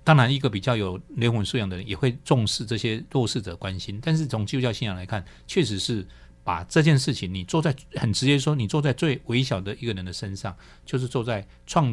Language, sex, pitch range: Chinese, male, 100-135 Hz